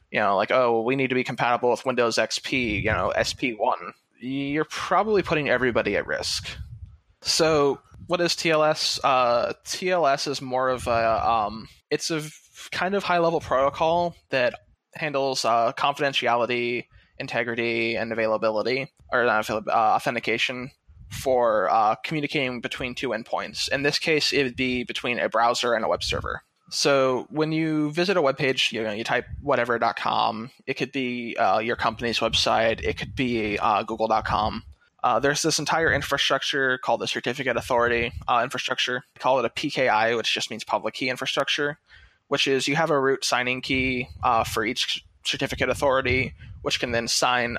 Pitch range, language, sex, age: 115-145 Hz, English, male, 20-39